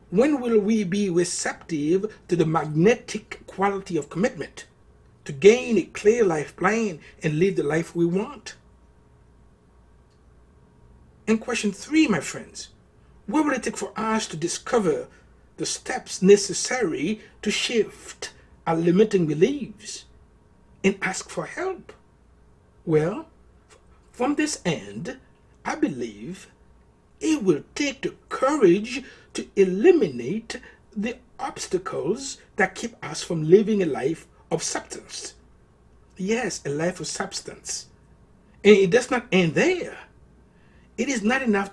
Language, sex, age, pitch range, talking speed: English, male, 60-79, 170-270 Hz, 125 wpm